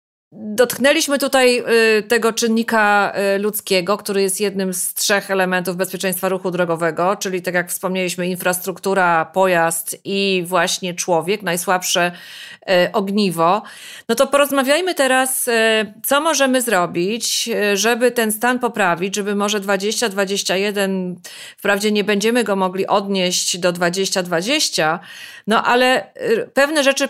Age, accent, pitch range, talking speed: 30-49, native, 185-230 Hz, 115 wpm